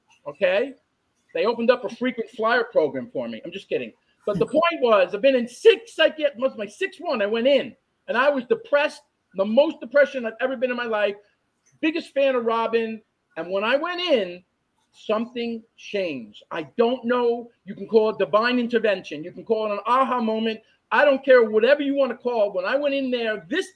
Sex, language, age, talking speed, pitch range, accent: male, English, 40-59, 215 wpm, 210-275 Hz, American